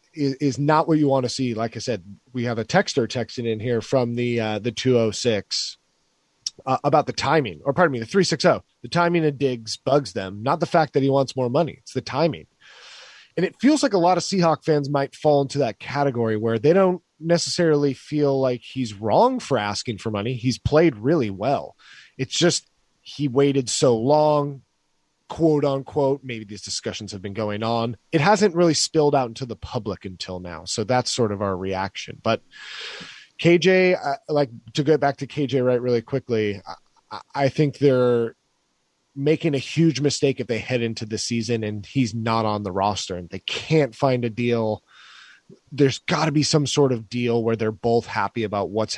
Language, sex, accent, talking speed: English, male, American, 195 wpm